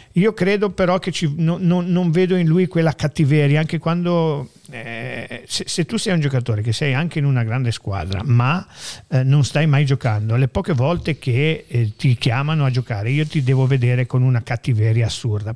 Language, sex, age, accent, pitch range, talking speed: Italian, male, 50-69, native, 120-155 Hz, 190 wpm